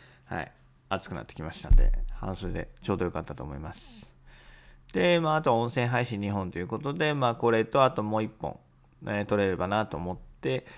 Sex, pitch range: male, 95-130 Hz